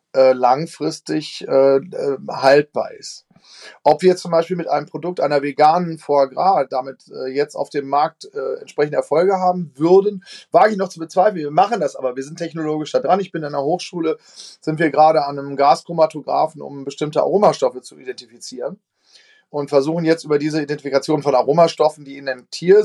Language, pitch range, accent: German, 140-175 Hz, German